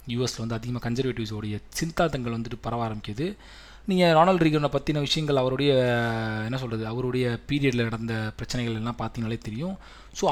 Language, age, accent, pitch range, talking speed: Tamil, 20-39, native, 120-155 Hz, 140 wpm